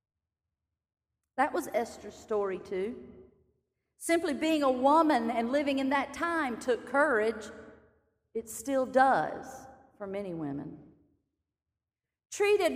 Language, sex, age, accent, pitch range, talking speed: English, female, 40-59, American, 220-285 Hz, 110 wpm